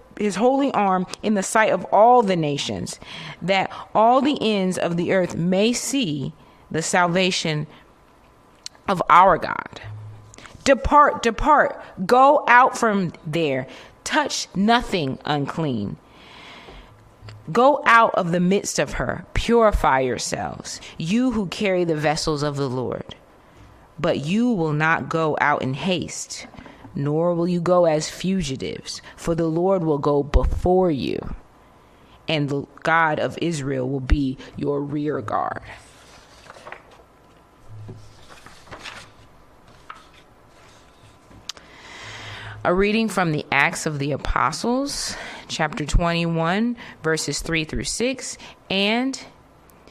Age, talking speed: 30-49, 115 wpm